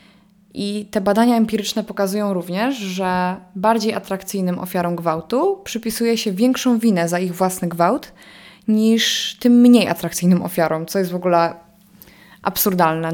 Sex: female